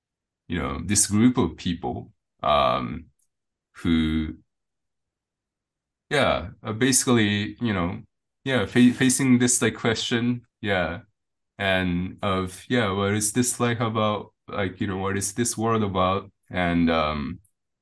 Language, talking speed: English, 125 wpm